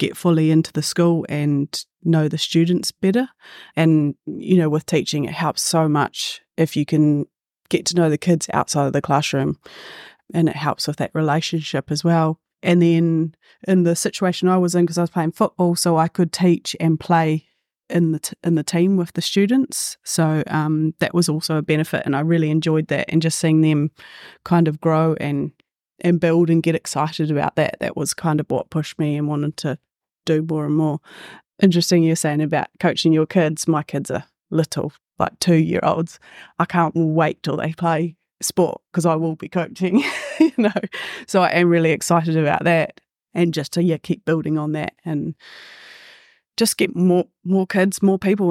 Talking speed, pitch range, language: 200 wpm, 155-175 Hz, English